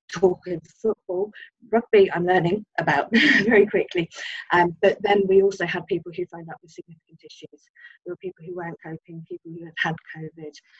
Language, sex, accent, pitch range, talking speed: English, female, British, 160-185 Hz, 185 wpm